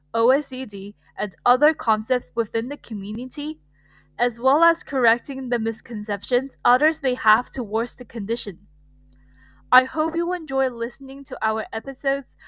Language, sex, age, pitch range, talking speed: English, female, 10-29, 215-270 Hz, 130 wpm